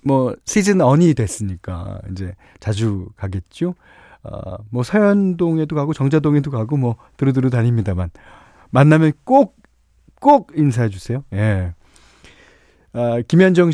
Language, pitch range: Korean, 100-160 Hz